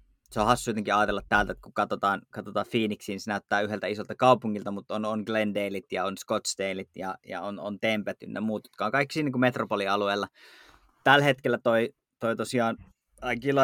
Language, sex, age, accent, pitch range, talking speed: Finnish, male, 20-39, native, 100-125 Hz, 180 wpm